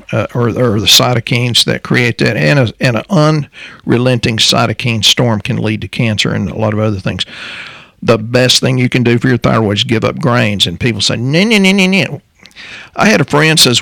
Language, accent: English, American